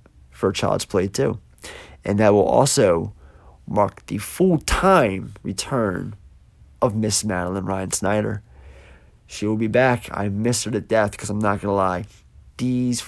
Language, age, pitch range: English, 30-49, 95-115 Hz